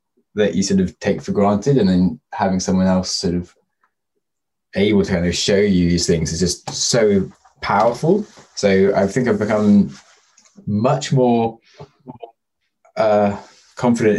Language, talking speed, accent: English, 150 wpm, British